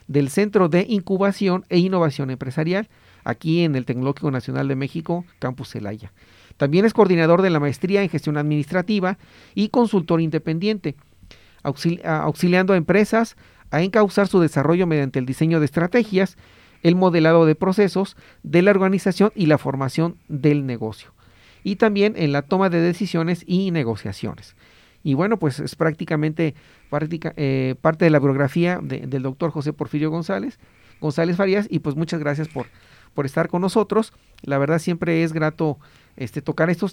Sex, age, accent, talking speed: male, 40-59, Mexican, 160 wpm